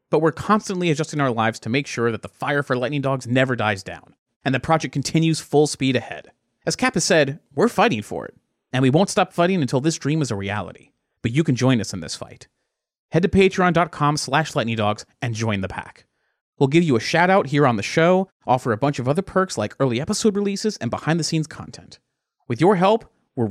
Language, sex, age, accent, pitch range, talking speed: English, male, 30-49, American, 125-175 Hz, 230 wpm